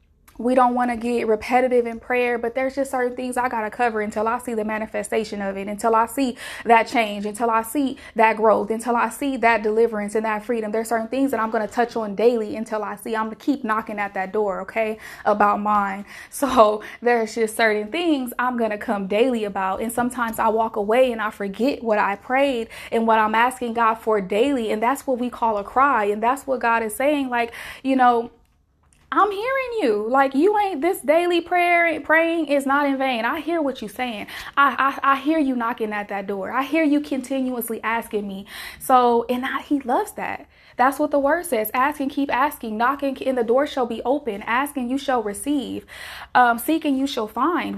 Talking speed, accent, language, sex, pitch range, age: 220 wpm, American, English, female, 220-270 Hz, 20-39